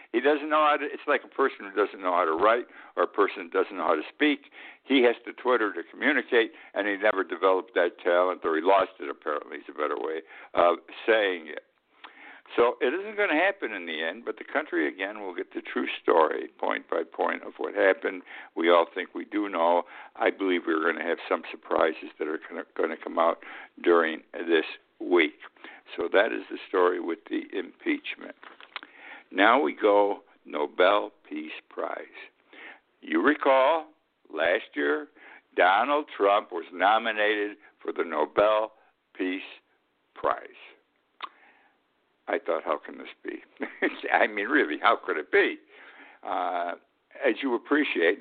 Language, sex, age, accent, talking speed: English, male, 60-79, American, 170 wpm